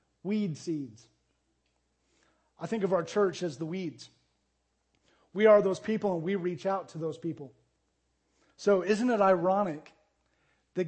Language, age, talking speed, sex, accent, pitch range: English, 40-59, 145 wpm, male, American, 145-190 Hz